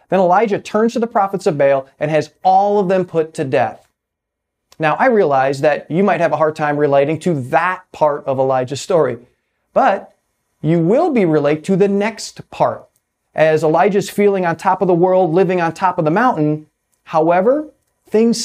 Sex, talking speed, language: male, 190 wpm, English